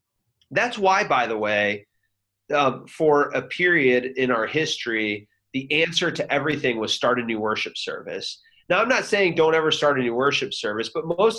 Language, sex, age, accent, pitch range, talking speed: English, male, 30-49, American, 110-155 Hz, 185 wpm